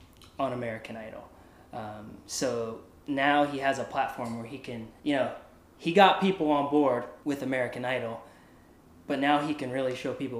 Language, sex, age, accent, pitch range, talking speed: English, male, 20-39, American, 115-135 Hz, 165 wpm